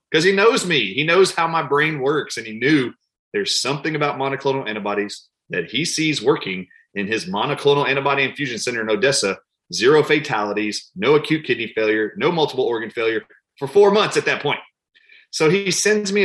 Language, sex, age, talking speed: English, male, 30-49, 185 wpm